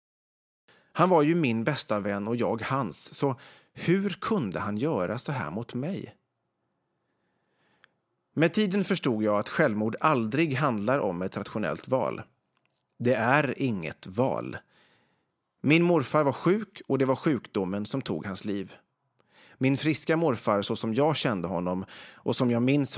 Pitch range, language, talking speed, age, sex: 110-150 Hz, English, 150 wpm, 30-49, male